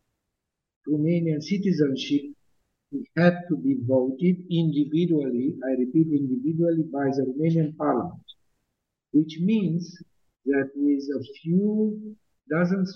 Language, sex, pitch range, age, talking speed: English, male, 130-175 Hz, 50-69, 95 wpm